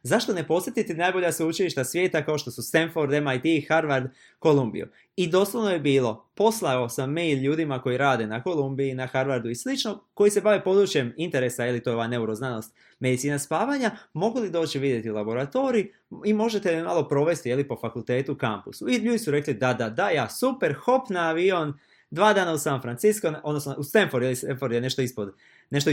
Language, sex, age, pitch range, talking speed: Croatian, male, 20-39, 130-185 Hz, 190 wpm